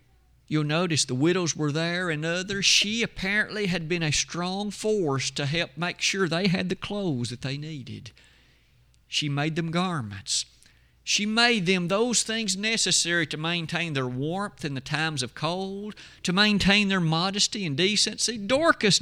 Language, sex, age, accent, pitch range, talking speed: English, male, 50-69, American, 140-190 Hz, 165 wpm